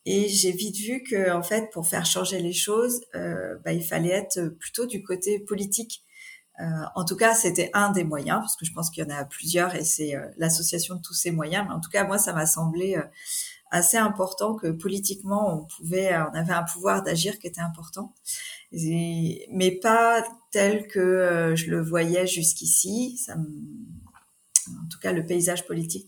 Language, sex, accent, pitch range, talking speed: French, female, French, 165-205 Hz, 200 wpm